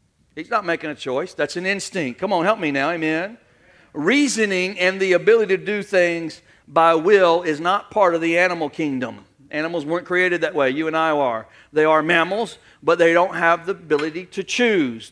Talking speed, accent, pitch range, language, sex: 200 wpm, American, 155-195 Hz, English, male